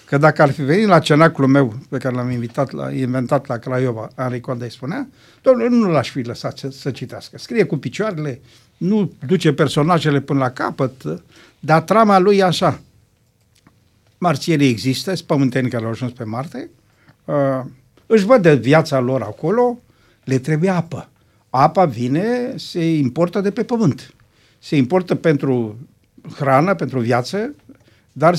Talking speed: 155 wpm